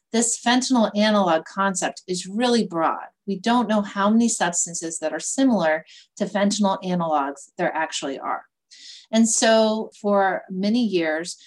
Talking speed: 140 wpm